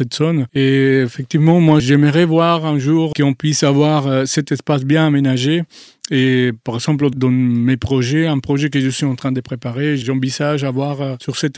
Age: 40-59